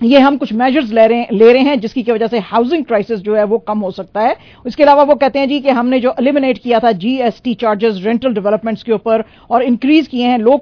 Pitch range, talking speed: 220-270 Hz, 260 wpm